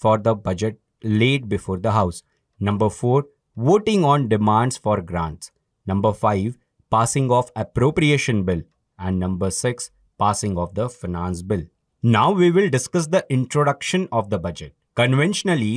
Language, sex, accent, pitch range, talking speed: English, male, Indian, 105-135 Hz, 145 wpm